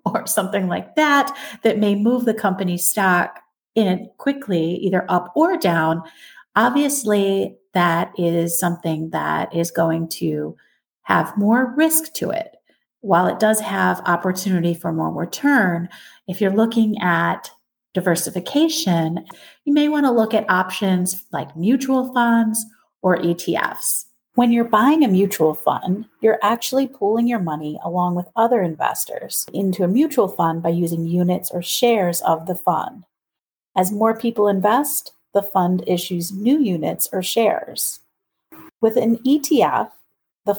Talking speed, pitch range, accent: 140 wpm, 175-235 Hz, American